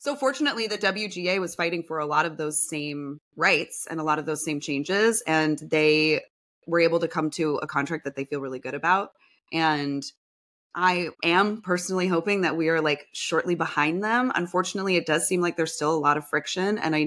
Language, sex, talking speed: English, female, 210 wpm